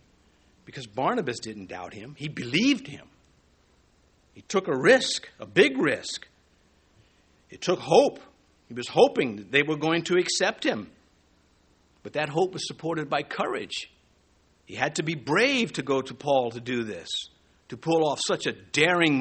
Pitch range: 120-185 Hz